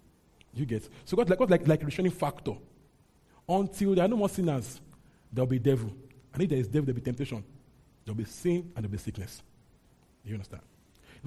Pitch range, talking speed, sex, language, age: 125-165 Hz, 195 wpm, male, English, 40-59